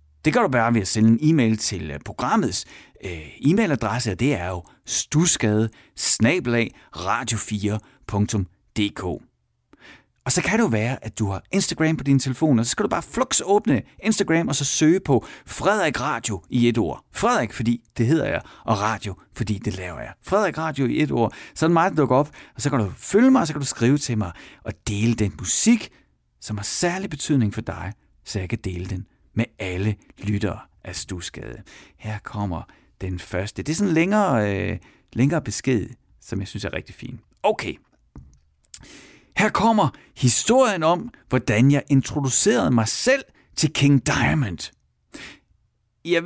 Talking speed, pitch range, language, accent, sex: 175 wpm, 105-150 Hz, Danish, native, male